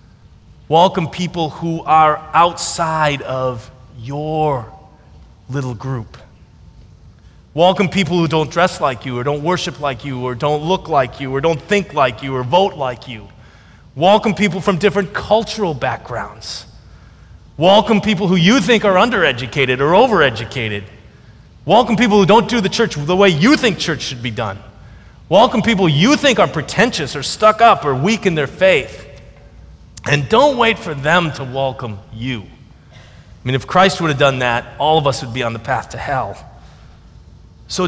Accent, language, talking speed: American, English, 170 wpm